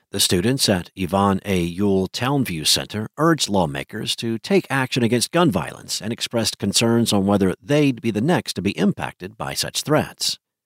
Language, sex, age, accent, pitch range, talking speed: English, male, 50-69, American, 95-125 Hz, 175 wpm